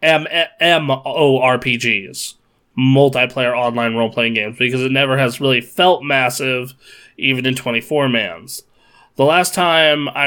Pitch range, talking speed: 125-145 Hz, 160 wpm